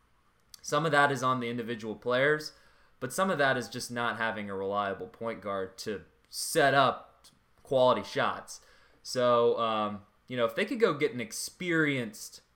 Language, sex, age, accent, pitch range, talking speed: English, male, 20-39, American, 105-125 Hz, 170 wpm